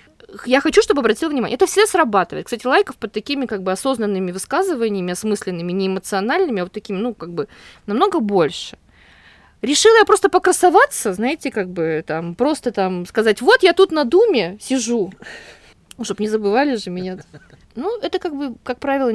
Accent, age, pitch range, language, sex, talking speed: native, 20-39, 195-270 Hz, Russian, female, 170 wpm